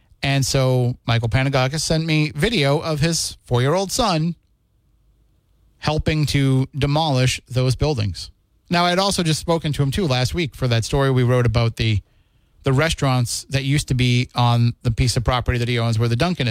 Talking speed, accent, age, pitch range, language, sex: 185 wpm, American, 30-49, 120-150 Hz, English, male